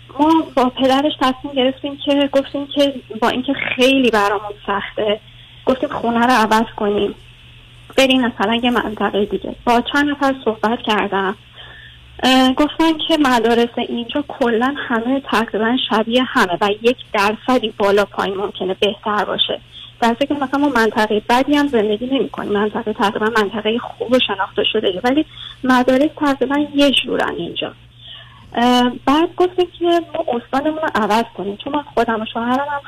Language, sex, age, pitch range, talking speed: Persian, female, 30-49, 210-270 Hz, 145 wpm